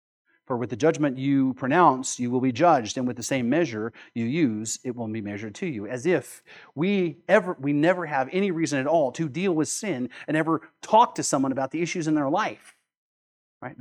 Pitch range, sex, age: 125-180 Hz, male, 40-59